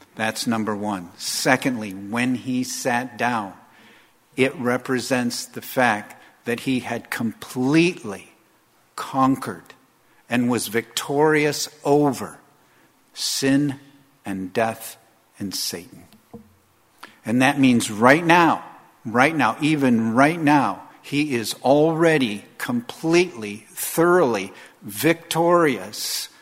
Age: 50-69